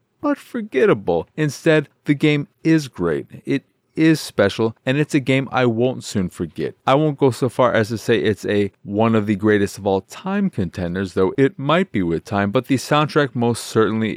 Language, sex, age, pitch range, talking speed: English, male, 30-49, 105-145 Hz, 200 wpm